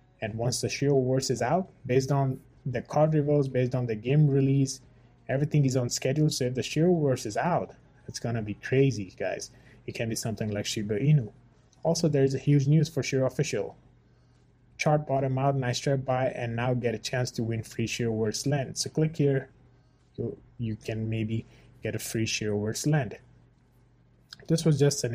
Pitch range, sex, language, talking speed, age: 115-140 Hz, male, English, 190 wpm, 20-39